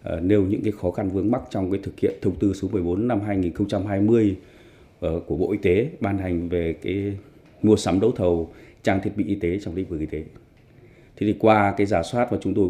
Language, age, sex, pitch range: Vietnamese, 20-39, male, 85-110 Hz